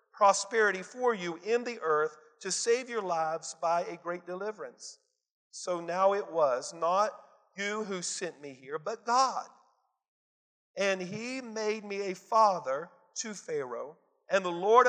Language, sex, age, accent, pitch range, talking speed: English, male, 50-69, American, 175-235 Hz, 150 wpm